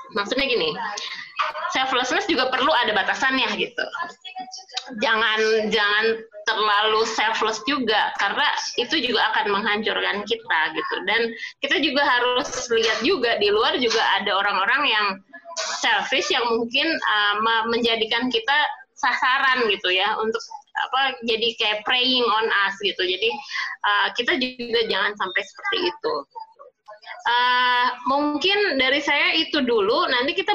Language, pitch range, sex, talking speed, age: Indonesian, 230-330 Hz, female, 130 wpm, 20-39